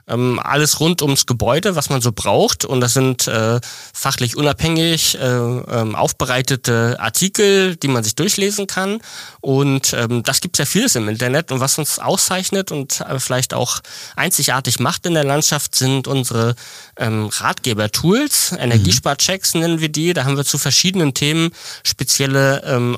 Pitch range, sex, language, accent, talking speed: 125-155 Hz, male, German, German, 155 wpm